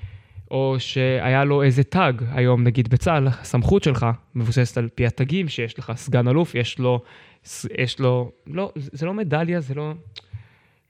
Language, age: Hebrew, 20-39